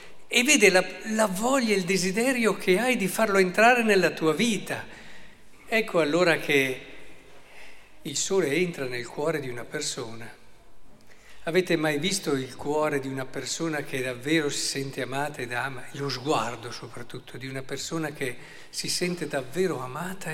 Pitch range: 140-185 Hz